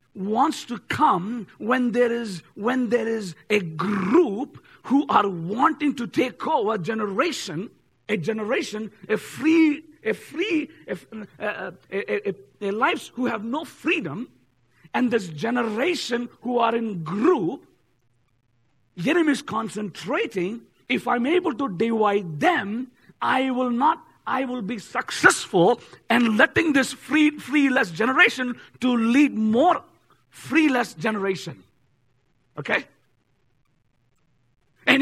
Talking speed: 120 wpm